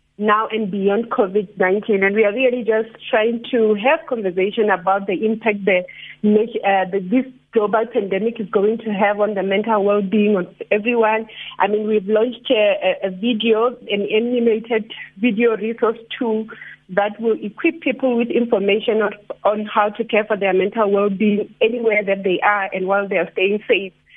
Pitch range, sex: 205-235 Hz, female